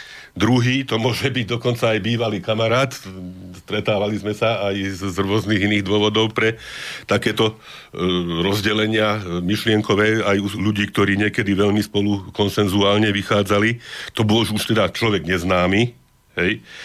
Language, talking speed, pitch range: Slovak, 130 wpm, 100-120 Hz